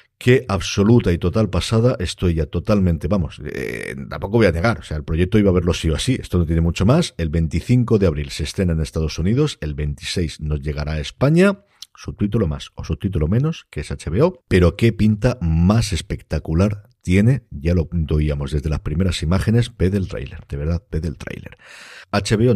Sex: male